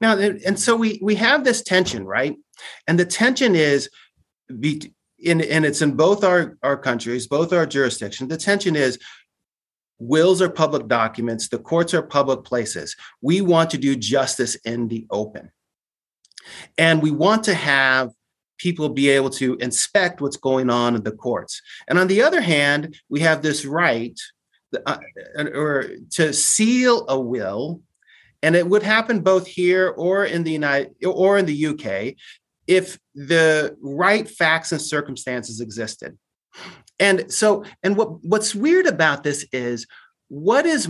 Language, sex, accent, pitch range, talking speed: English, male, American, 135-185 Hz, 155 wpm